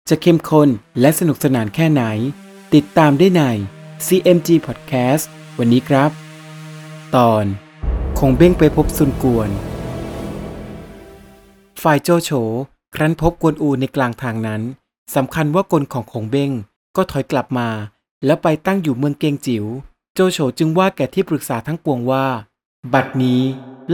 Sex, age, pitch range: male, 30-49, 125-160 Hz